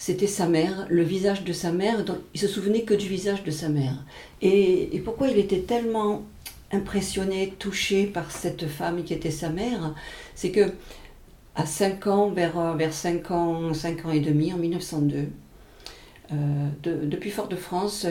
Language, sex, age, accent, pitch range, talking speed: French, female, 50-69, French, 155-200 Hz, 175 wpm